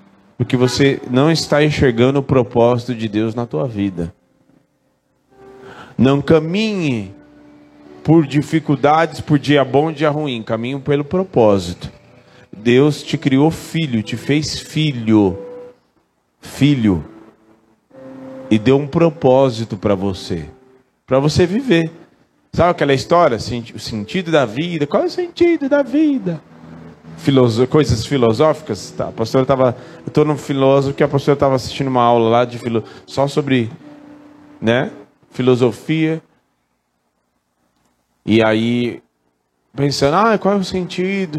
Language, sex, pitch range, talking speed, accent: Portuguese, male, 115-160 Hz, 125 wpm, Brazilian